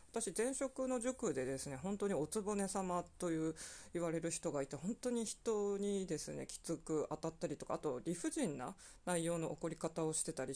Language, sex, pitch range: Japanese, female, 160-205 Hz